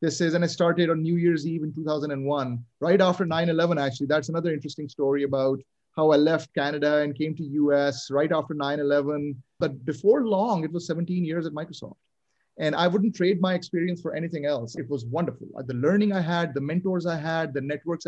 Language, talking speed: English, 205 wpm